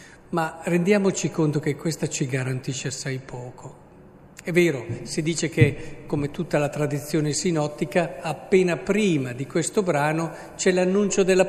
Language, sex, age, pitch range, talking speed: Italian, male, 50-69, 150-185 Hz, 140 wpm